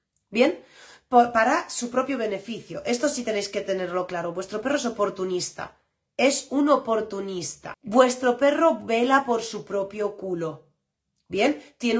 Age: 30-49